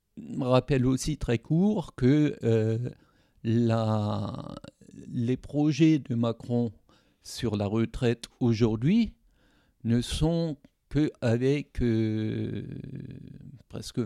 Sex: male